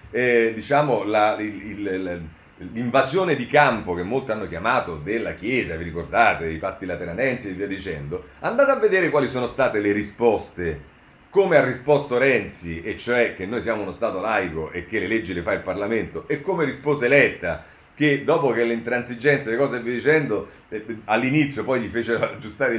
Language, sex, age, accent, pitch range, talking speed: Italian, male, 40-59, native, 100-140 Hz, 185 wpm